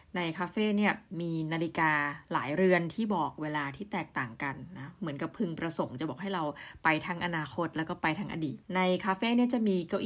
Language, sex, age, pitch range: Thai, female, 20-39, 160-210 Hz